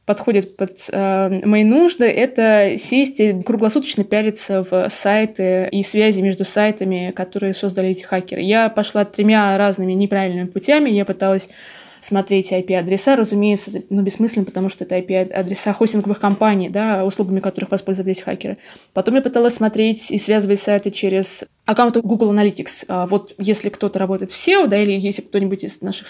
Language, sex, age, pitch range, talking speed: Russian, female, 20-39, 190-215 Hz, 150 wpm